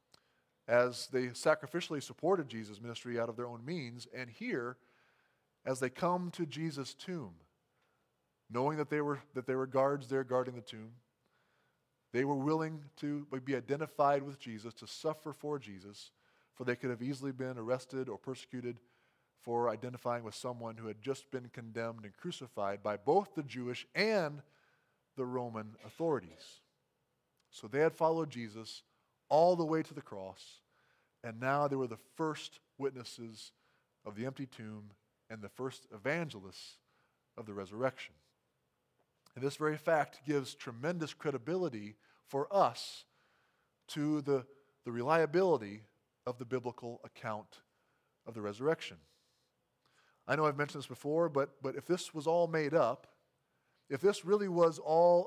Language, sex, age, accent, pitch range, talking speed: English, male, 20-39, American, 120-155 Hz, 150 wpm